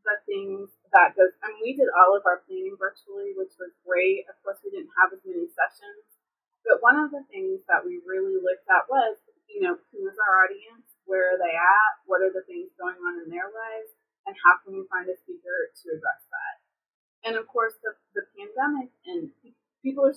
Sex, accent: female, American